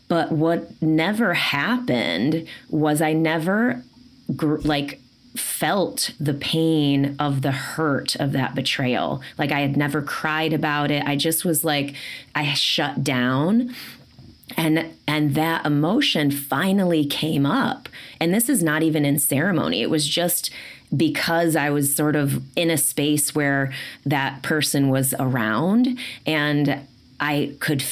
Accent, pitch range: American, 140-160 Hz